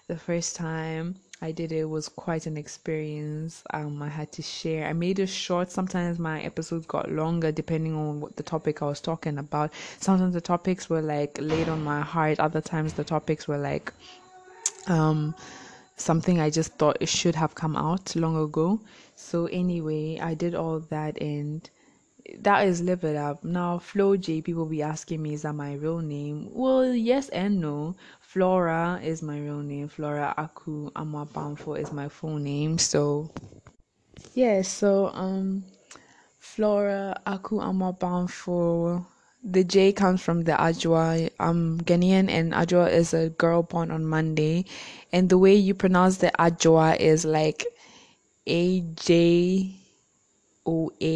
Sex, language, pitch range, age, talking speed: female, English, 155-180 Hz, 20-39, 155 wpm